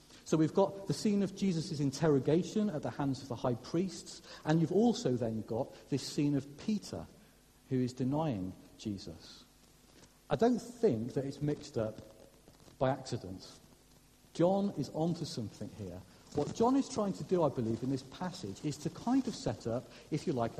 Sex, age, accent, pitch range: male, 50-69, British, 125-185 Hz